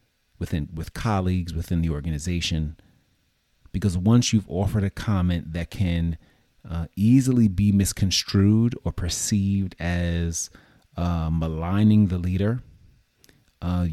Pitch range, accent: 80-100 Hz, American